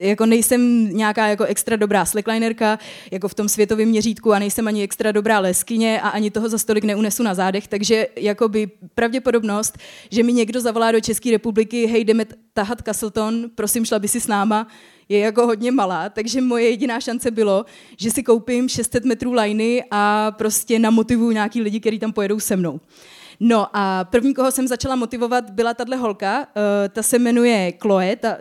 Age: 20-39